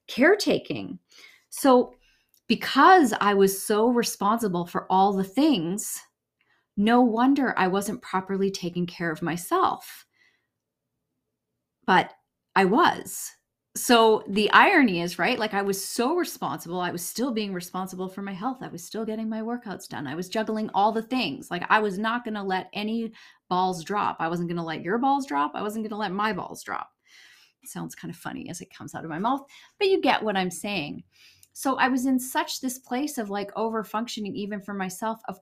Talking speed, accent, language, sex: 190 wpm, American, English, female